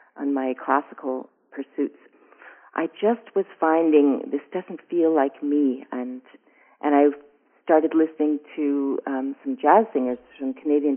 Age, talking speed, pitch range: 40-59, 135 wpm, 135-160 Hz